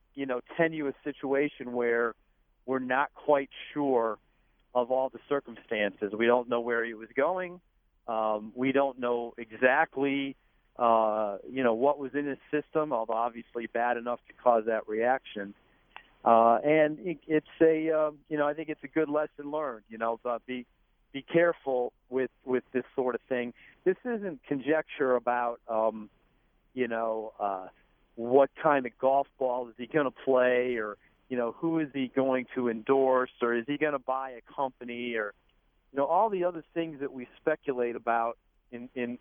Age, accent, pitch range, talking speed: 50-69, American, 115-145 Hz, 175 wpm